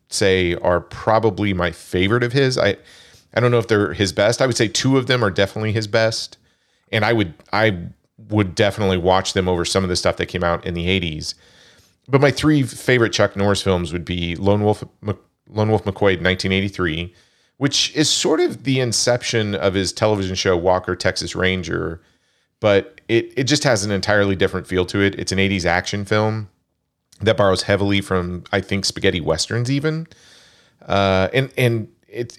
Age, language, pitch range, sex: 40-59, English, 90-110 Hz, male